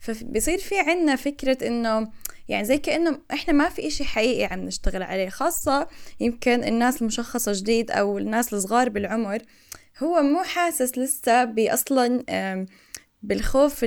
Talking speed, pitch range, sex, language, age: 135 wpm, 215-280 Hz, female, Arabic, 10-29